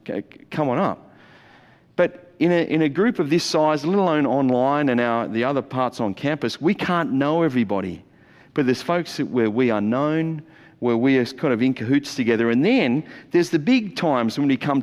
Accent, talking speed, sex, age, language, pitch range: Australian, 210 wpm, male, 40-59, English, 130-175 Hz